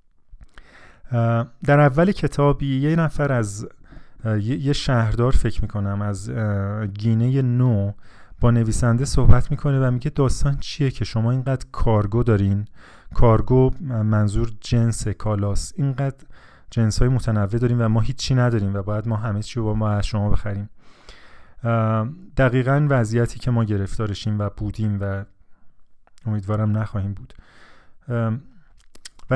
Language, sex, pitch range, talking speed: Persian, male, 105-130 Hz, 130 wpm